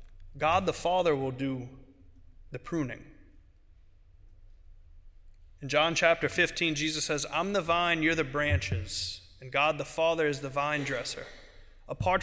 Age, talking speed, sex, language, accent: 30-49, 135 wpm, male, English, American